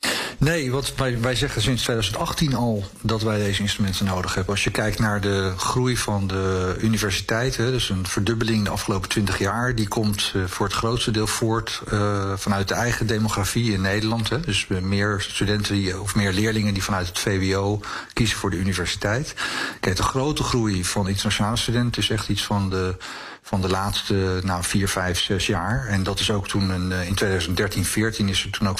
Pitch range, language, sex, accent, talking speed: 95-115 Hz, Dutch, male, Dutch, 195 wpm